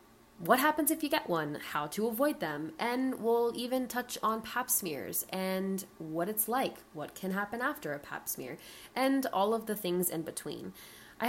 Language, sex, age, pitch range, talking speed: English, female, 20-39, 170-225 Hz, 190 wpm